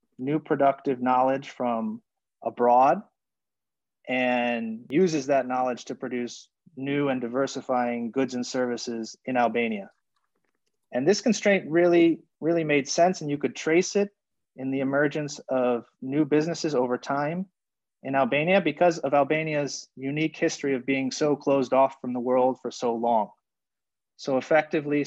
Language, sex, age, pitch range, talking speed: English, male, 30-49, 125-150 Hz, 140 wpm